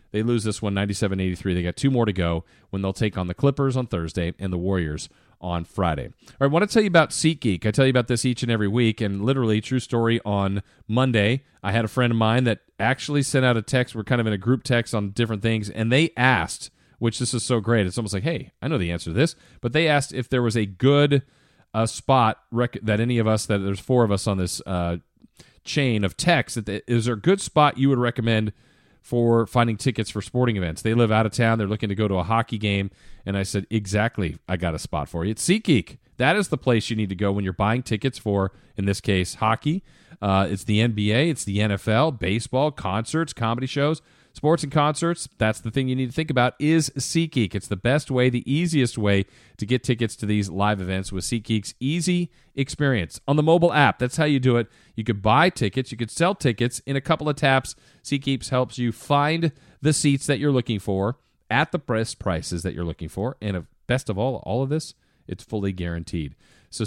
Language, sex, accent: English, male, American